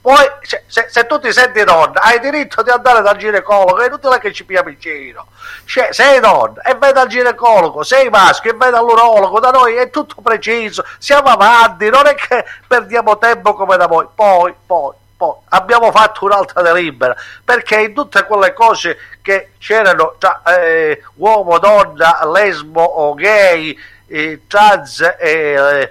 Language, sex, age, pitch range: Italian, male, 50-69, 180-245 Hz